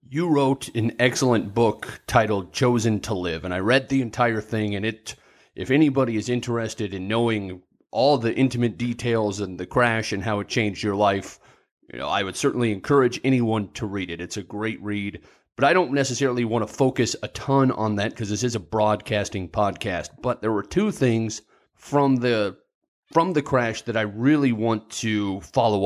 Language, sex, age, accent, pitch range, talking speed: English, male, 30-49, American, 105-125 Hz, 195 wpm